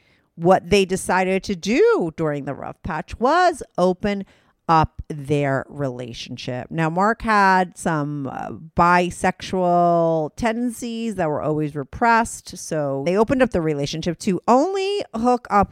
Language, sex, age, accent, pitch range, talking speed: English, female, 40-59, American, 160-230 Hz, 135 wpm